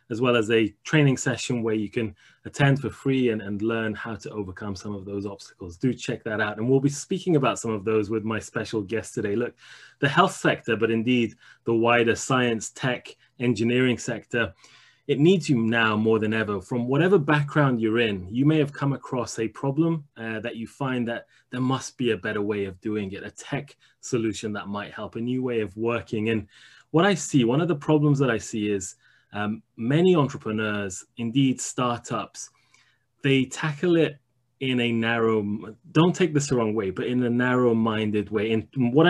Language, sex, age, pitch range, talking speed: English, male, 20-39, 110-135 Hz, 205 wpm